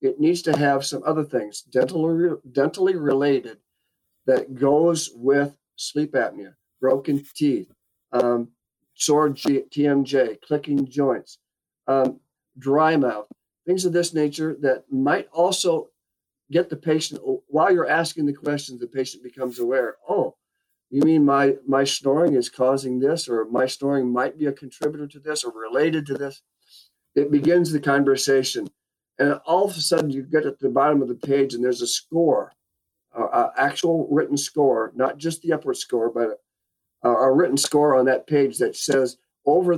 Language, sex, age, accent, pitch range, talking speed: English, male, 50-69, American, 130-155 Hz, 160 wpm